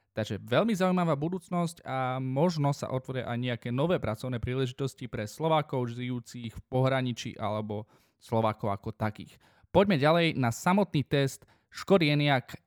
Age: 20-39